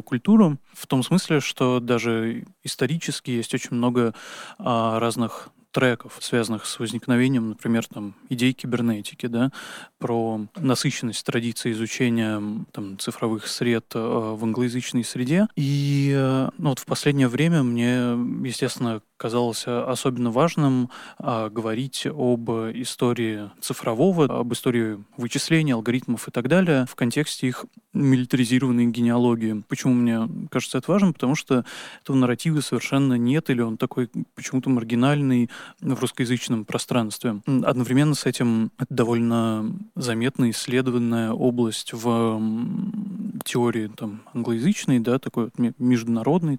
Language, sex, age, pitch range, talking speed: Russian, male, 20-39, 115-135 Hz, 115 wpm